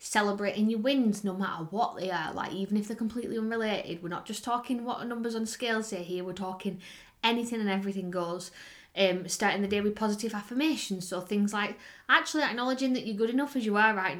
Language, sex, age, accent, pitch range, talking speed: English, female, 20-39, British, 190-220 Hz, 210 wpm